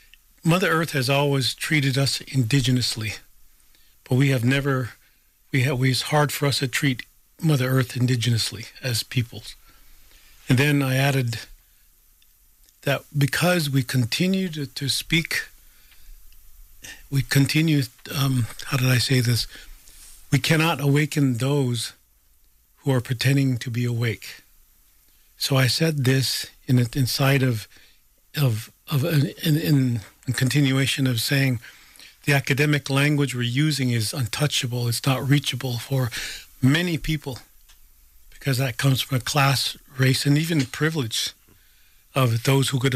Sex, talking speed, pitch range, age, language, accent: male, 135 wpm, 120-140 Hz, 50-69, English, American